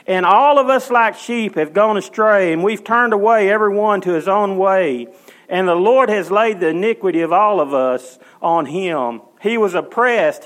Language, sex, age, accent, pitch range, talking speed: English, male, 40-59, American, 160-215 Hz, 205 wpm